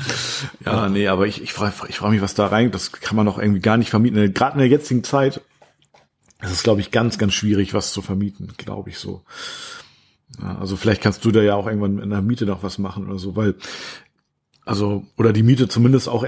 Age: 40-59